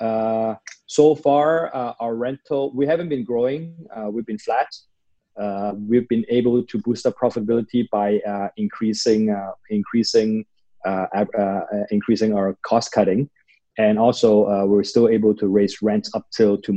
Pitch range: 100-120 Hz